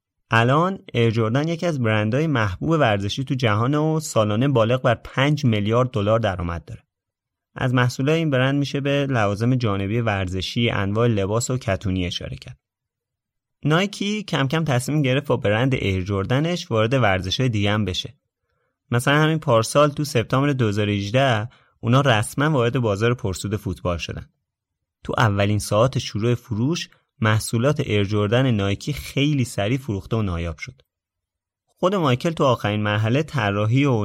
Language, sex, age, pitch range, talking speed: Persian, male, 30-49, 100-135 Hz, 140 wpm